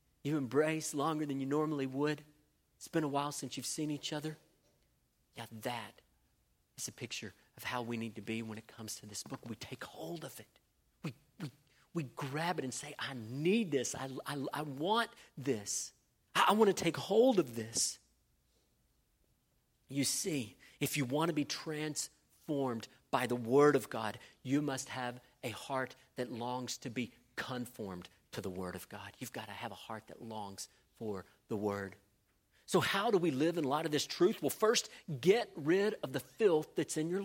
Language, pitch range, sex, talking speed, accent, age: English, 120-165 Hz, male, 190 wpm, American, 40-59